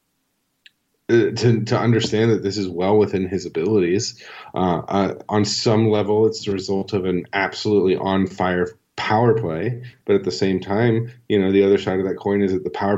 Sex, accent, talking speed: male, American, 195 wpm